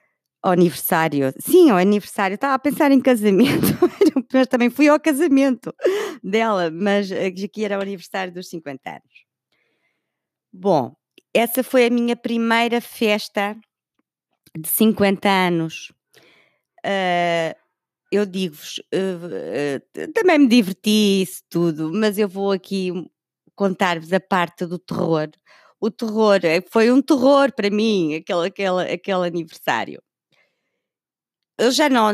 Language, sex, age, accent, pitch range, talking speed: Portuguese, female, 20-39, Brazilian, 170-230 Hz, 120 wpm